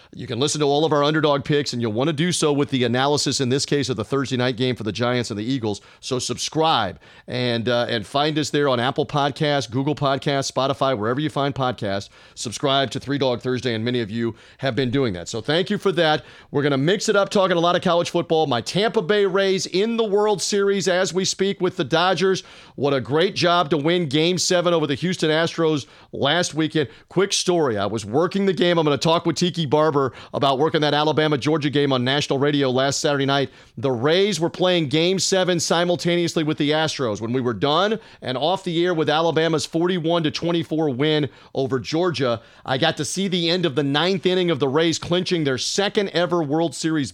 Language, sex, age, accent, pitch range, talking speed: English, male, 40-59, American, 135-175 Hz, 225 wpm